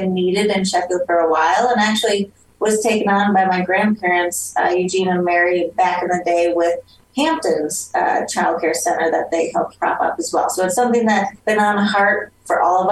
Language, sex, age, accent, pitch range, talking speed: English, female, 20-39, American, 180-210 Hz, 215 wpm